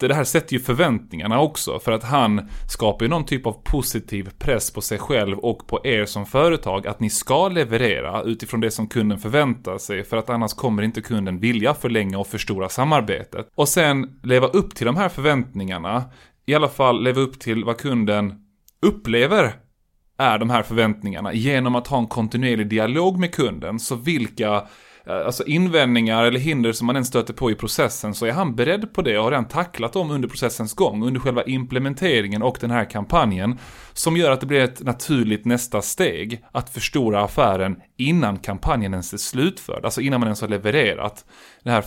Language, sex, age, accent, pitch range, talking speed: Swedish, male, 20-39, native, 105-130 Hz, 190 wpm